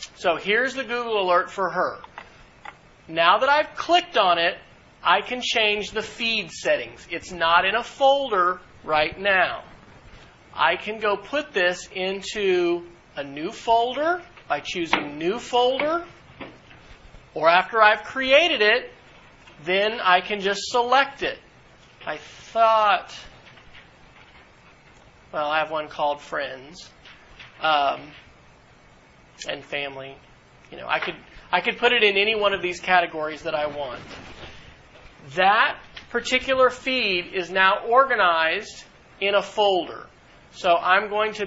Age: 40-59